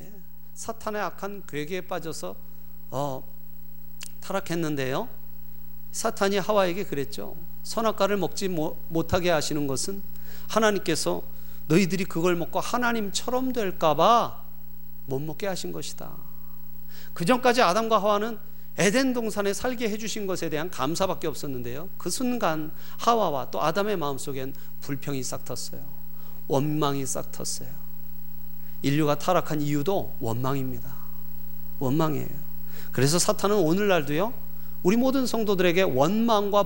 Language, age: Korean, 40-59